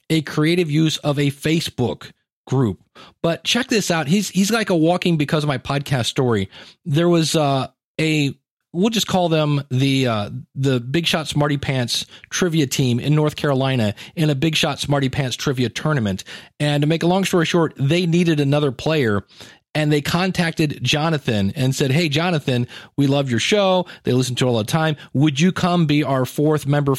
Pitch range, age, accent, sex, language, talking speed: 135-170 Hz, 40-59, American, male, English, 190 wpm